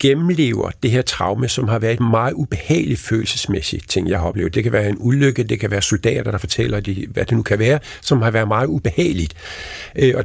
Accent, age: native, 50-69